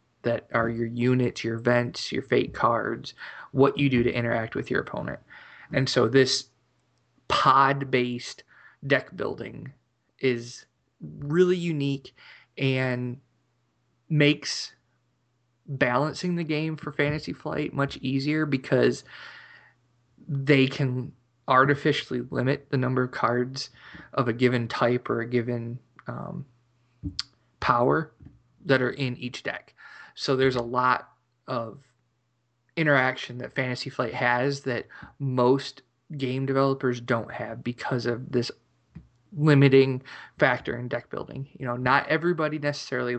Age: 20-39